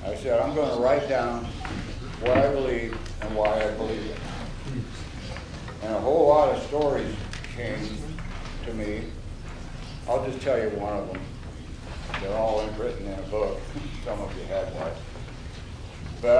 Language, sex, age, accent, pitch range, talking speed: English, male, 60-79, American, 105-130 Hz, 155 wpm